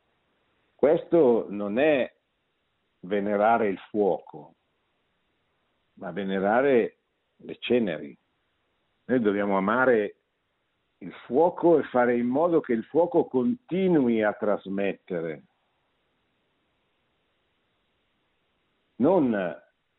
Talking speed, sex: 80 wpm, male